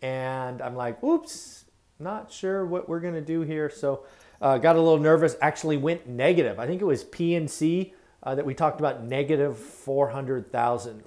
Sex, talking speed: male, 180 wpm